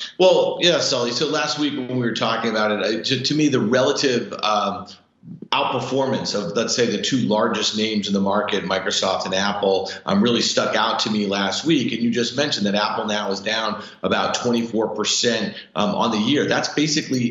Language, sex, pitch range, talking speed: English, male, 105-135 Hz, 200 wpm